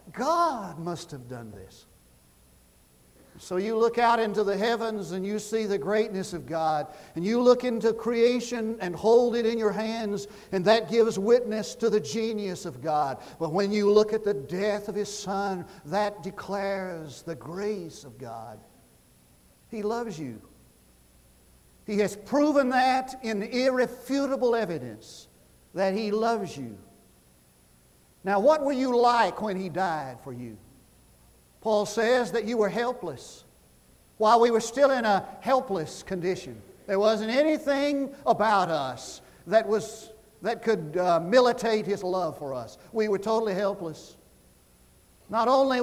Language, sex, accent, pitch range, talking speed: English, male, American, 165-230 Hz, 150 wpm